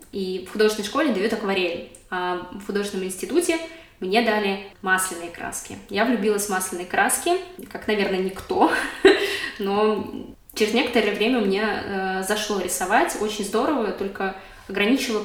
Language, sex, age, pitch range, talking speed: Russian, female, 20-39, 195-235 Hz, 130 wpm